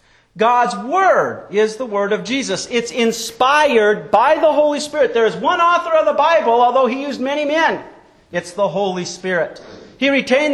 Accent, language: American, English